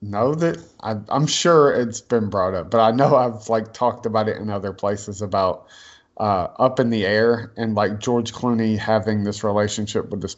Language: English